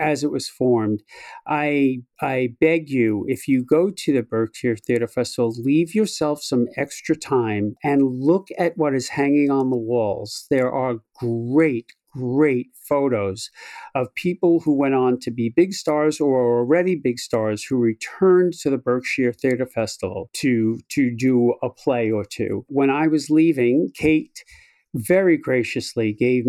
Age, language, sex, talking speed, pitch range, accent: 50-69, English, male, 160 wpm, 120-160 Hz, American